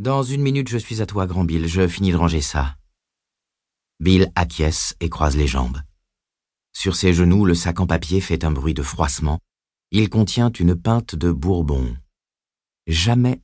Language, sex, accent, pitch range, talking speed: French, male, French, 75-90 Hz, 180 wpm